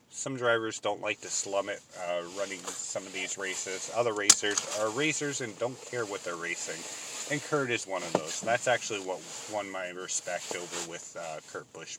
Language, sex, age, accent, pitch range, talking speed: English, male, 30-49, American, 105-140 Hz, 200 wpm